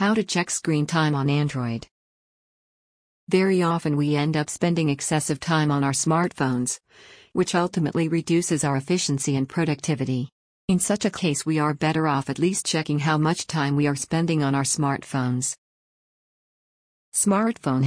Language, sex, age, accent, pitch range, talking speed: English, female, 50-69, American, 140-170 Hz, 155 wpm